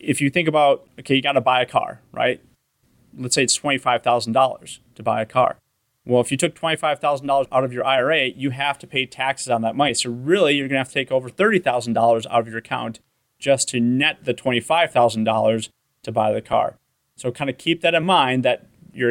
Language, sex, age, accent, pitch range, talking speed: English, male, 30-49, American, 120-145 Hz, 210 wpm